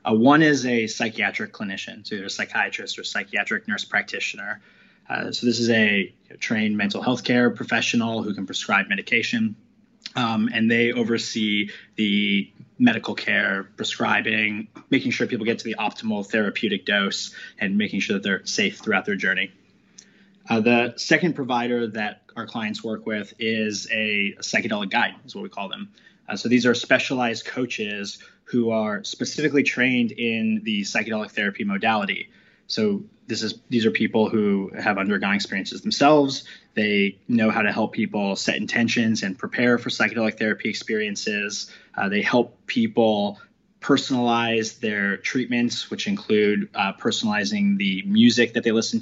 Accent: American